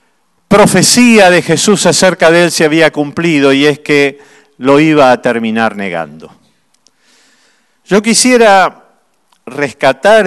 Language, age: Spanish, 50-69